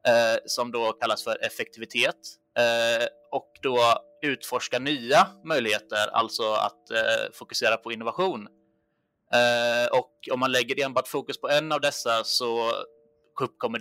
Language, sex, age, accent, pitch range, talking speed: Swedish, male, 20-39, native, 110-135 Hz, 115 wpm